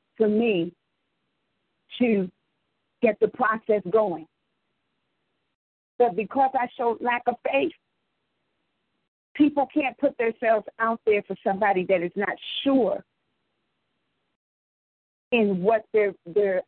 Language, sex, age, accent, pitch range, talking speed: English, female, 40-59, American, 195-240 Hz, 110 wpm